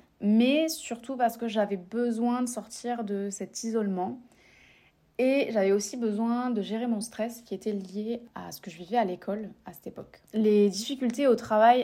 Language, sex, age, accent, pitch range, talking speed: French, female, 20-39, French, 195-235 Hz, 180 wpm